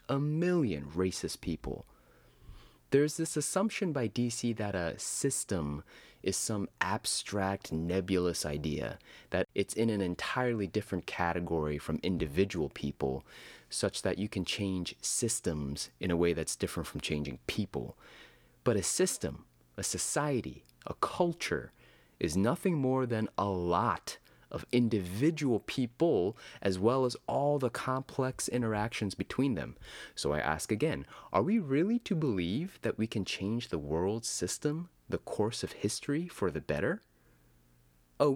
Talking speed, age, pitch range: 140 wpm, 30-49, 80-125 Hz